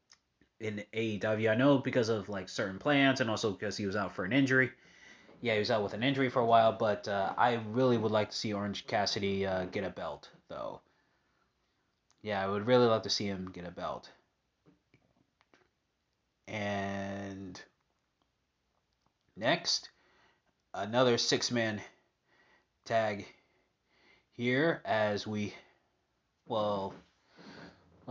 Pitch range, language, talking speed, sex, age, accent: 100-130 Hz, English, 135 wpm, male, 30-49, American